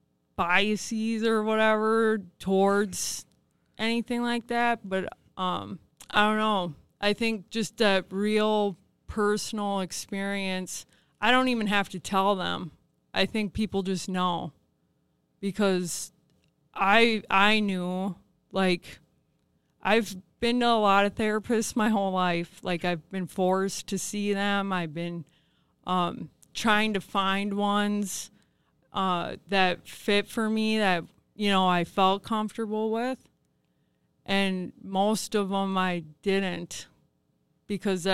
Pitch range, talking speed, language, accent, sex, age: 180-215 Hz, 125 wpm, English, American, female, 20-39